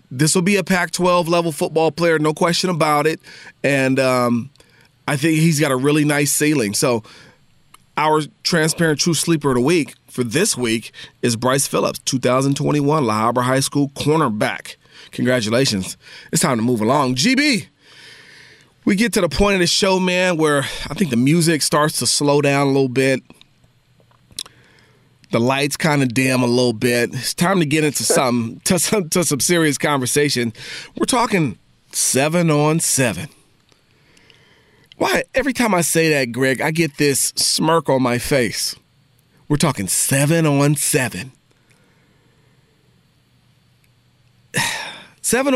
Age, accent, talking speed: 30-49, American, 150 wpm